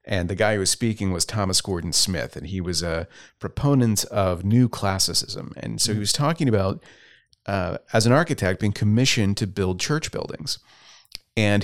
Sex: male